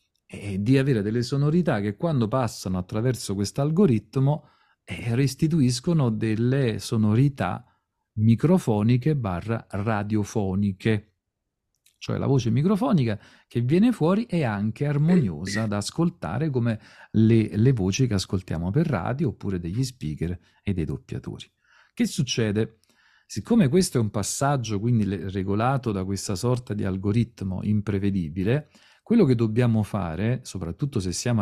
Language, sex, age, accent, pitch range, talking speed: Italian, male, 40-59, native, 100-140 Hz, 125 wpm